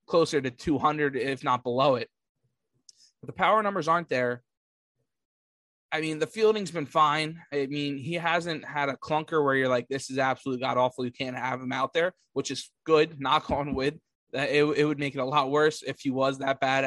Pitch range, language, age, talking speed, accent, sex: 135-155 Hz, English, 20-39, 215 wpm, American, male